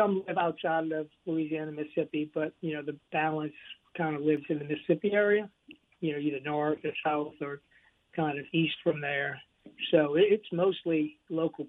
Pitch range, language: 145-165 Hz, English